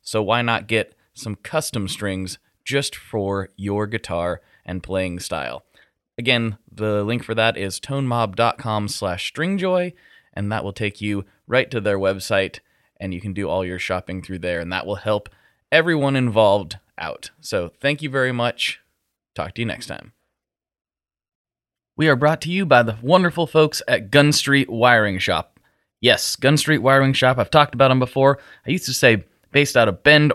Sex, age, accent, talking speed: male, 20-39, American, 180 wpm